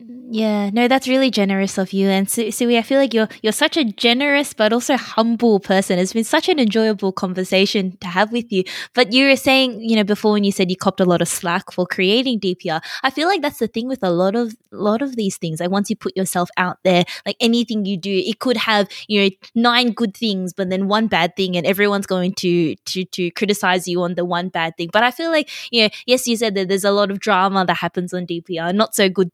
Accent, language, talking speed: Australian, English, 250 wpm